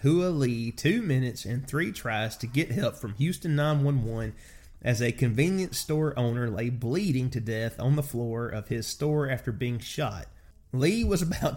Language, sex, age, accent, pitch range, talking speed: English, male, 30-49, American, 115-145 Hz, 175 wpm